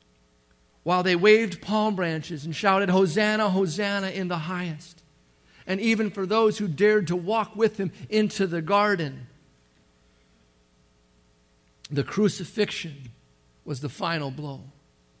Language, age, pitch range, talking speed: English, 50-69, 130-195 Hz, 120 wpm